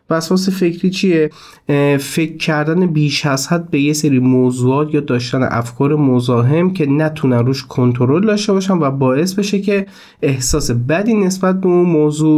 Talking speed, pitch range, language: 155 wpm, 120-150 Hz, Persian